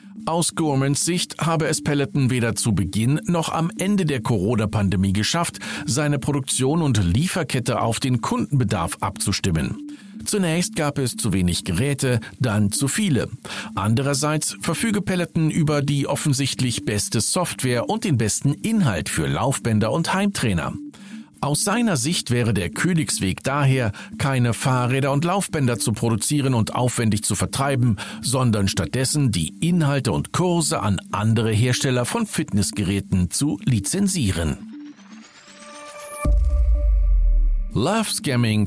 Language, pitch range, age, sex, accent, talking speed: German, 110-170 Hz, 50-69, male, German, 125 wpm